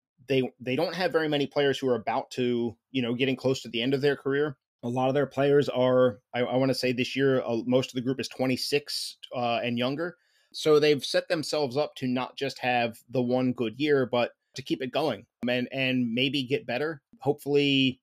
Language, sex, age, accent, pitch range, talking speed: English, male, 30-49, American, 125-140 Hz, 225 wpm